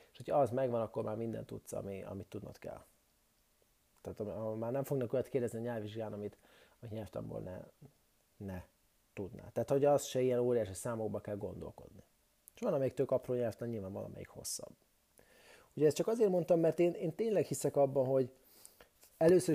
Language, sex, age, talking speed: English, male, 30-49, 170 wpm